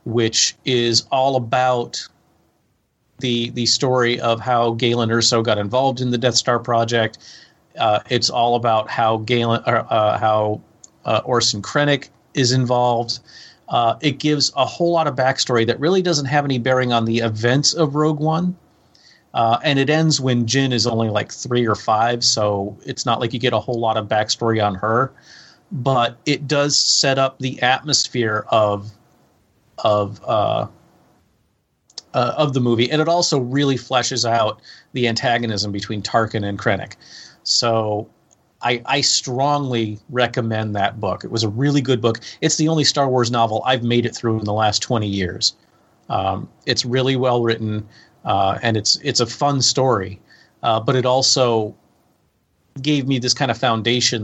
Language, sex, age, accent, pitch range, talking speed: English, male, 30-49, American, 115-135 Hz, 170 wpm